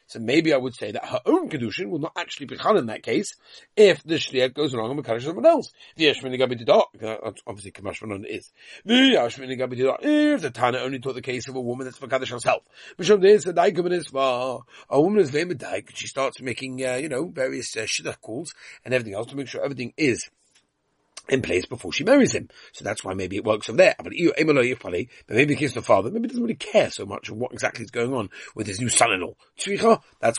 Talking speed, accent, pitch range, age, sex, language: 215 wpm, British, 125-185 Hz, 40-59, male, English